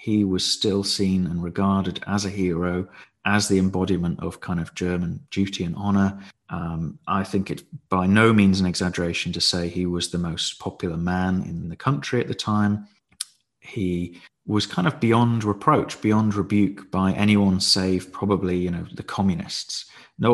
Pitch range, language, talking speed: 90-105 Hz, English, 175 wpm